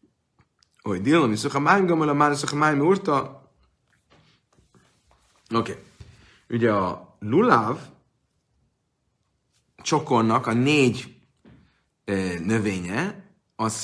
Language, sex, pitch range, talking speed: Hungarian, male, 105-130 Hz, 45 wpm